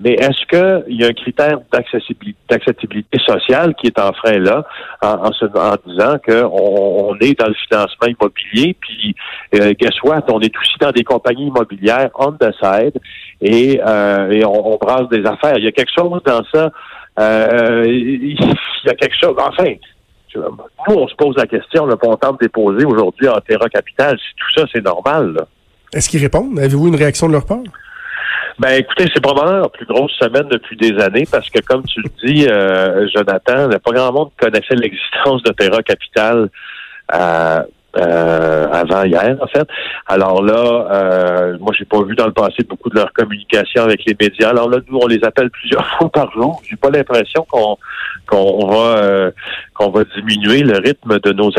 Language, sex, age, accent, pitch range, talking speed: French, male, 60-79, French, 105-135 Hz, 195 wpm